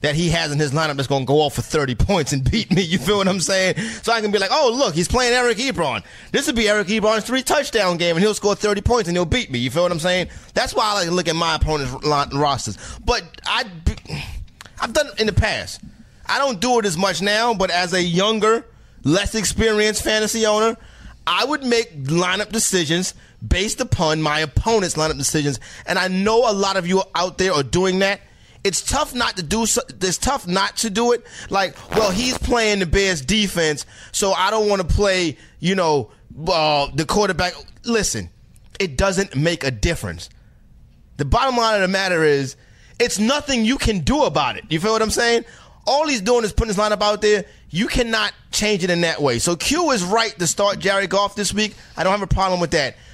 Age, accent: 30-49, American